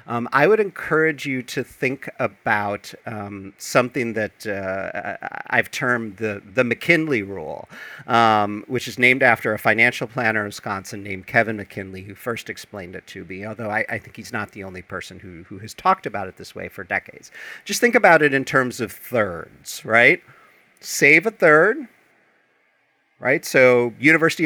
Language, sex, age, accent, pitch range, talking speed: English, male, 50-69, American, 105-160 Hz, 175 wpm